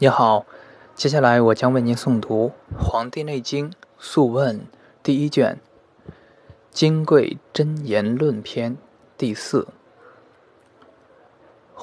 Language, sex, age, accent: Chinese, male, 20-39, native